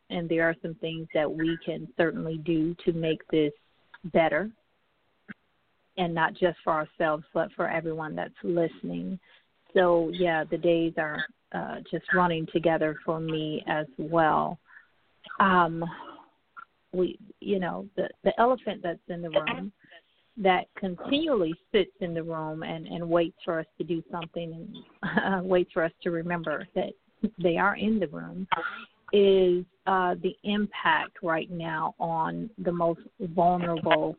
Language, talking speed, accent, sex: English, 150 wpm, American, female